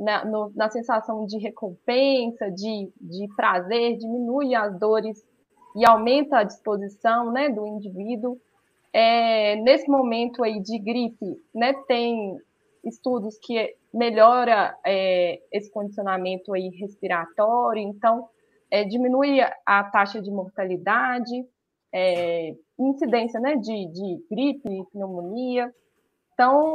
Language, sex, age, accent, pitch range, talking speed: Portuguese, female, 20-39, Brazilian, 210-265 Hz, 115 wpm